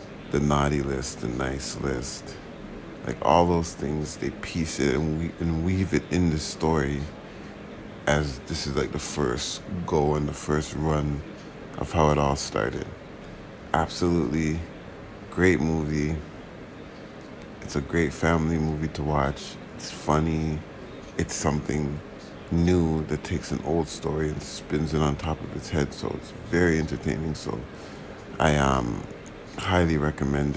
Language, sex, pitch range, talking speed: English, male, 75-85 Hz, 145 wpm